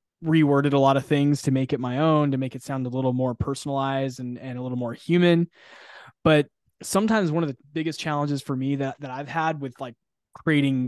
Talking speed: 220 wpm